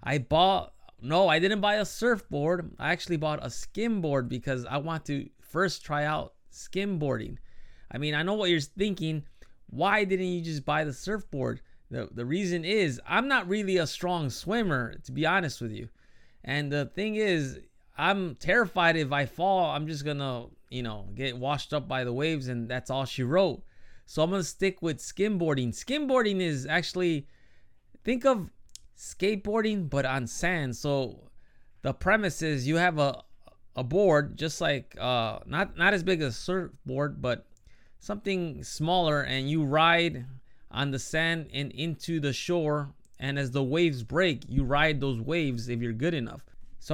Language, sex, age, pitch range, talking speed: English, male, 20-39, 135-185 Hz, 175 wpm